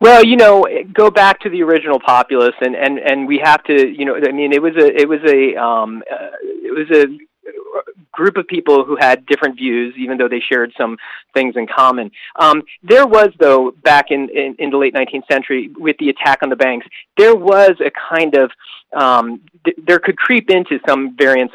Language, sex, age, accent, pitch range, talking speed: English, male, 30-49, American, 125-175 Hz, 210 wpm